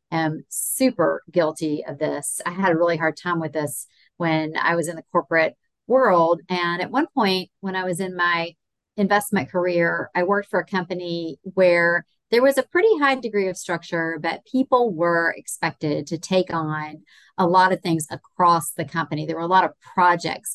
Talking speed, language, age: 190 wpm, English, 40-59